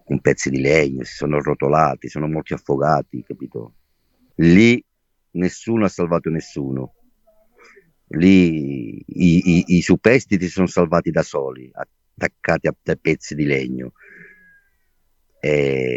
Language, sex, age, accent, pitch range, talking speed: Italian, male, 50-69, native, 75-90 Hz, 120 wpm